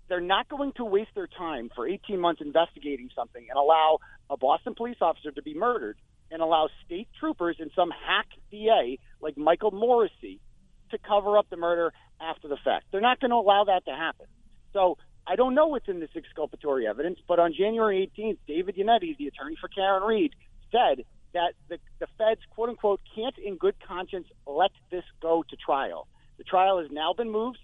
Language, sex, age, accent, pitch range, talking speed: English, male, 40-59, American, 160-230 Hz, 195 wpm